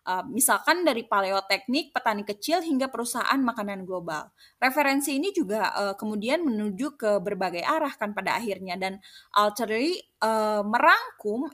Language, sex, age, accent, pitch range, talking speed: Indonesian, female, 10-29, native, 215-295 Hz, 135 wpm